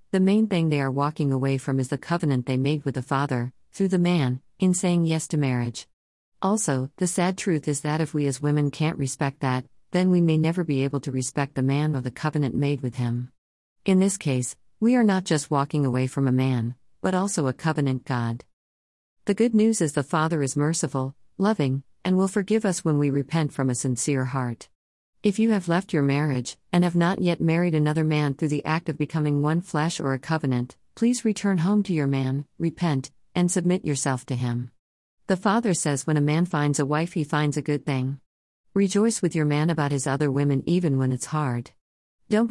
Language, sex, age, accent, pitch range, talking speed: English, female, 50-69, American, 130-170 Hz, 215 wpm